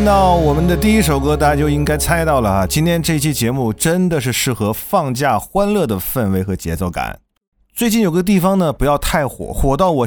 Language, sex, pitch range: Chinese, male, 105-165 Hz